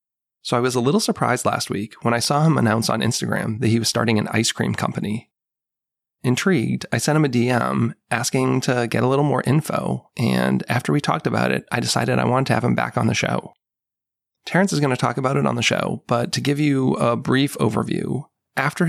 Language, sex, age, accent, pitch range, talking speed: English, male, 20-39, American, 110-130 Hz, 225 wpm